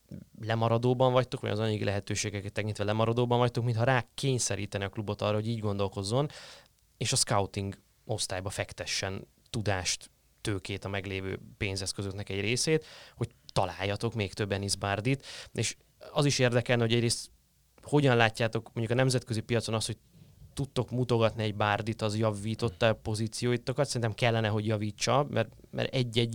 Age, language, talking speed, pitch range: 20-39, Hungarian, 145 wpm, 105-125 Hz